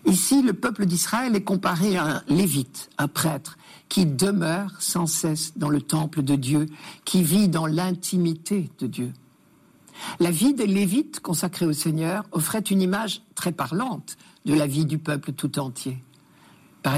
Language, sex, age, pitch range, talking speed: French, male, 60-79, 150-190 Hz, 165 wpm